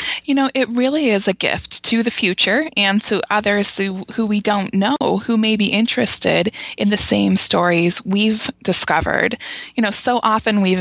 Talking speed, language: 185 wpm, English